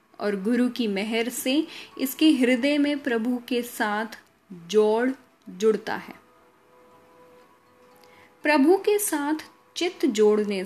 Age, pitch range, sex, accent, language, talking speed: 10-29, 220-300 Hz, female, native, Hindi, 105 wpm